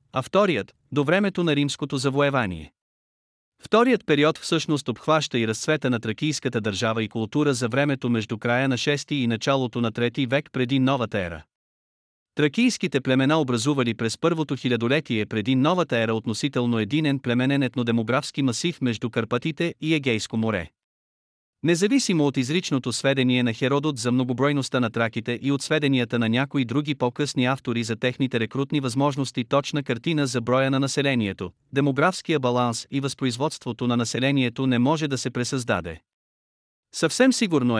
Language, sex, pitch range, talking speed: Bulgarian, male, 120-150 Hz, 145 wpm